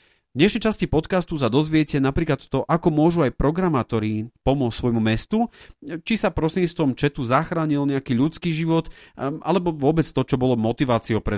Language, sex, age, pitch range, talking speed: Slovak, male, 40-59, 110-145 Hz, 155 wpm